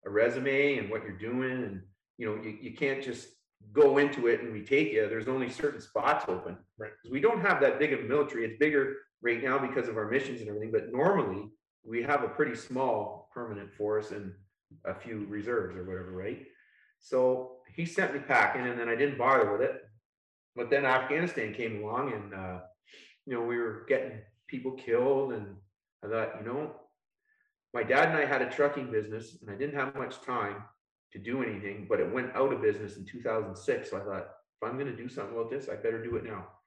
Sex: male